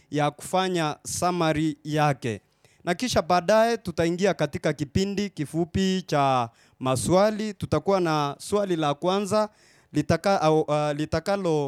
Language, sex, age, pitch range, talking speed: English, male, 30-49, 150-190 Hz, 110 wpm